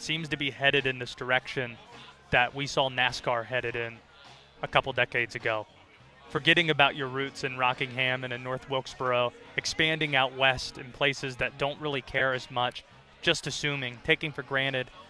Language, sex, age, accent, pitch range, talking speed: English, male, 20-39, American, 130-160 Hz, 170 wpm